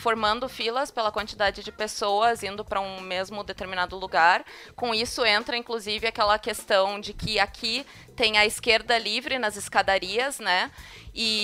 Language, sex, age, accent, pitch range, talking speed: Portuguese, female, 20-39, Brazilian, 210-255 Hz, 150 wpm